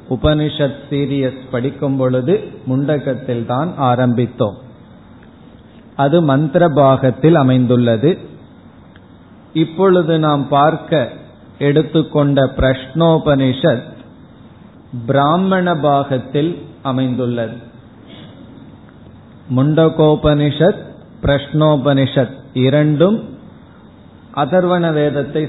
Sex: male